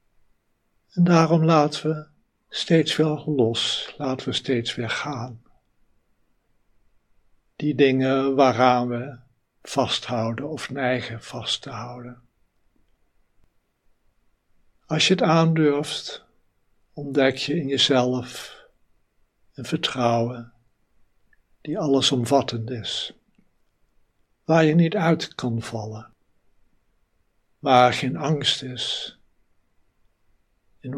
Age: 60-79